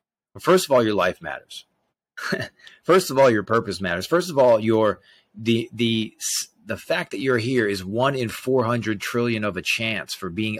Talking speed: 190 wpm